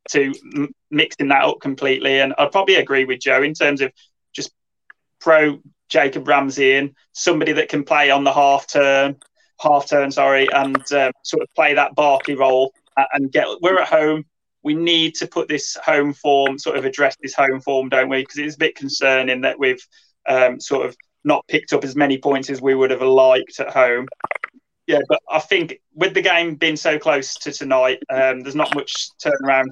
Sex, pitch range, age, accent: male, 130-150 Hz, 20-39, British